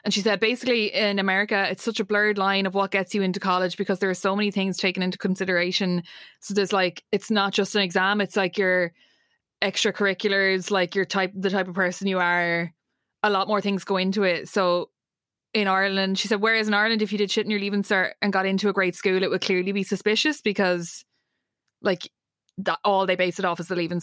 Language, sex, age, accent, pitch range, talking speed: English, female, 20-39, Irish, 180-205 Hz, 225 wpm